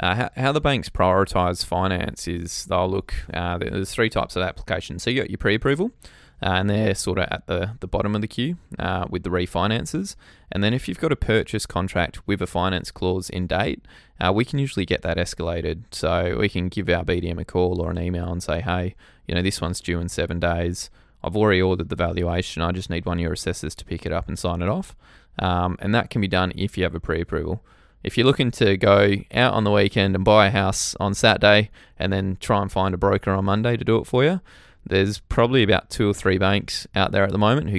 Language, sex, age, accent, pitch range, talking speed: English, male, 20-39, Australian, 90-105 Hz, 240 wpm